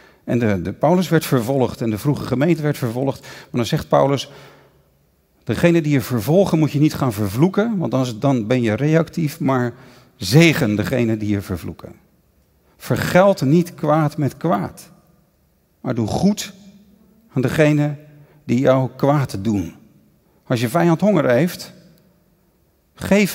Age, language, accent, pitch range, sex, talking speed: 50-69, Dutch, Dutch, 130-180 Hz, male, 145 wpm